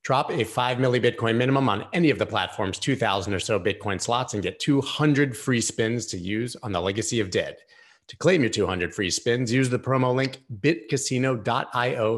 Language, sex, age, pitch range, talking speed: English, male, 30-49, 105-135 Hz, 180 wpm